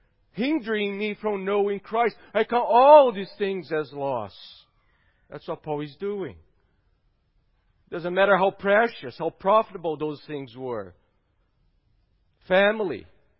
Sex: male